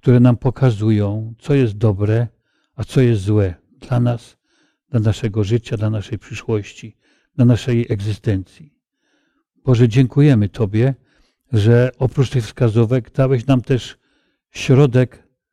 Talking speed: 125 wpm